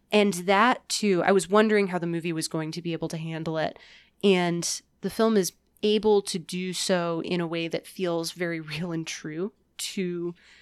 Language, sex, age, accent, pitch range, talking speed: English, female, 20-39, American, 165-200 Hz, 200 wpm